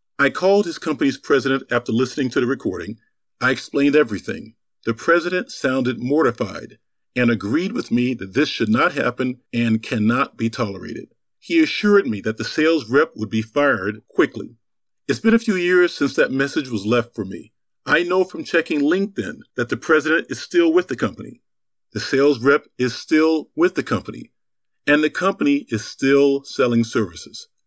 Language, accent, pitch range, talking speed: English, American, 120-170 Hz, 175 wpm